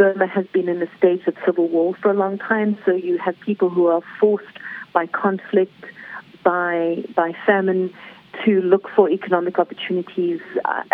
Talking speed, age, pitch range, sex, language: 170 wpm, 50-69, 180-210 Hz, female, English